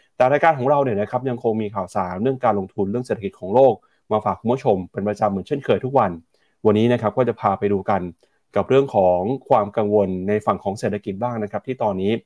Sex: male